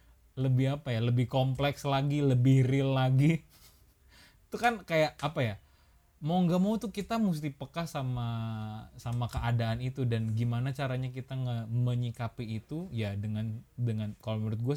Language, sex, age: Indonesian, male, 20-39